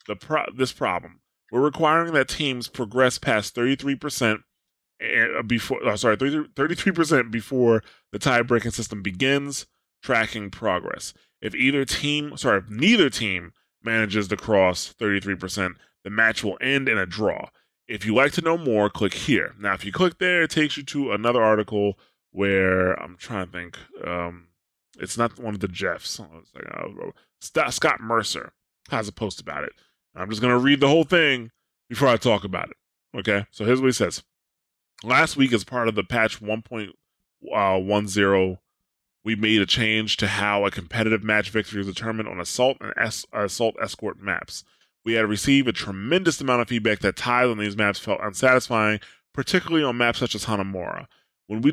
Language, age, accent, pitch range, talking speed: English, 20-39, American, 100-130 Hz, 175 wpm